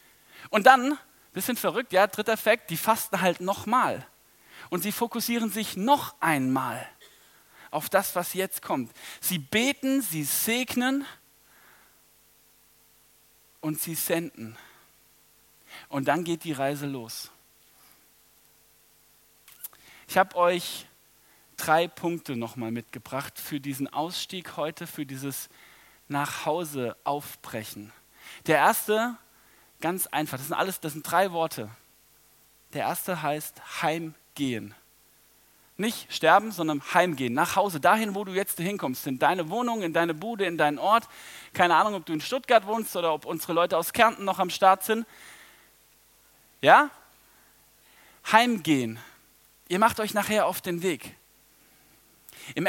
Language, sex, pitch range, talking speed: German, male, 150-220 Hz, 130 wpm